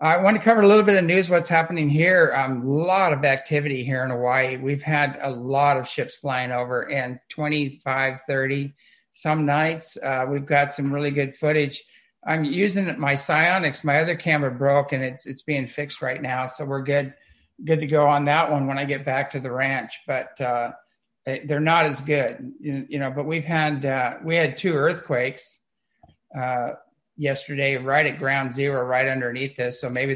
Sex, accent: male, American